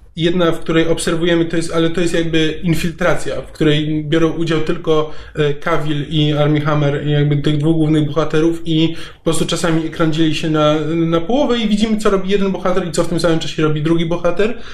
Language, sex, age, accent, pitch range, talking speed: Polish, male, 20-39, native, 155-180 Hz, 200 wpm